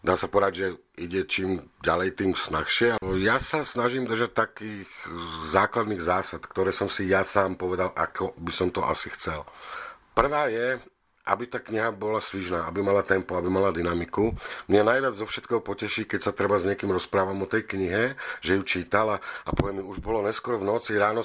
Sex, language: male, Slovak